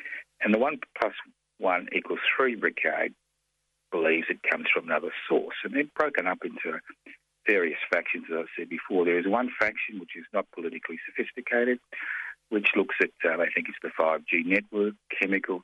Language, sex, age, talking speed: English, male, 50-69, 175 wpm